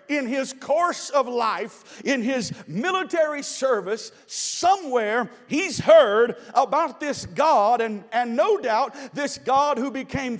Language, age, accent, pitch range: English, 50-69, American, 240-315 Hz